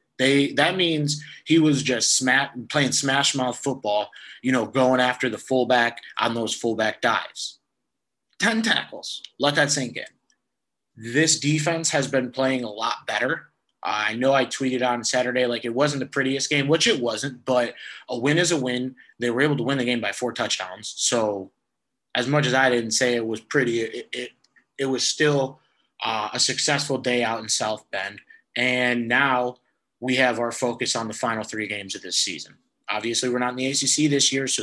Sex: male